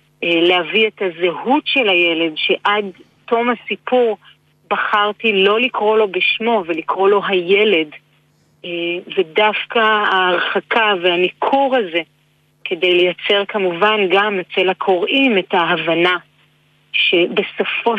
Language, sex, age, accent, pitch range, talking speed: Hebrew, female, 40-59, native, 175-215 Hz, 95 wpm